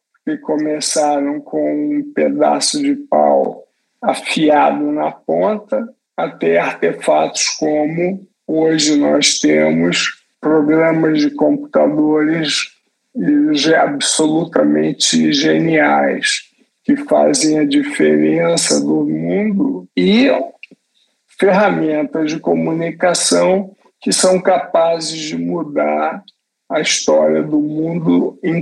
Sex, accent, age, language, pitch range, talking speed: male, Brazilian, 50-69, Portuguese, 145-245 Hz, 85 wpm